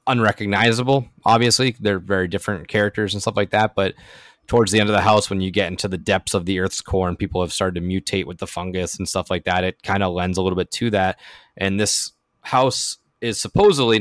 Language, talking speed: English, 230 wpm